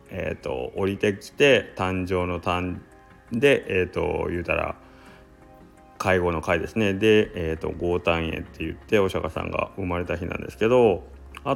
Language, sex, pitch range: Japanese, male, 85-110 Hz